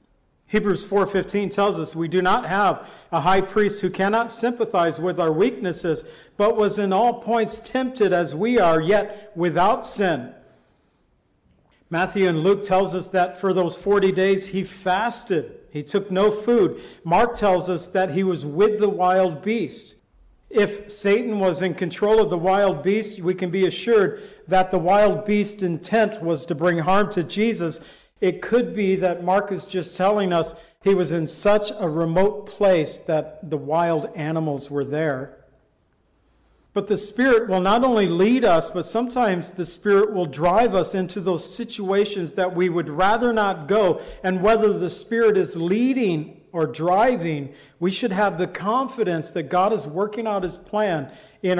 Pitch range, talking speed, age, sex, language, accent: 175-210 Hz, 170 wpm, 50-69, male, English, American